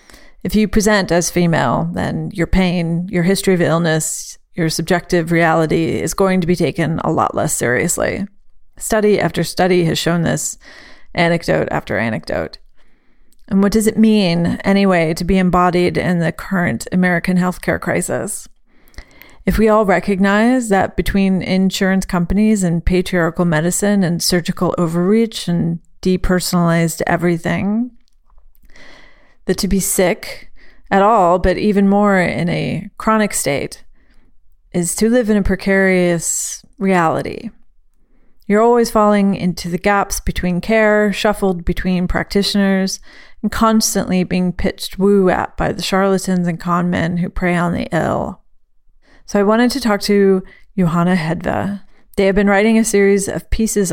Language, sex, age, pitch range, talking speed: English, female, 40-59, 175-205 Hz, 145 wpm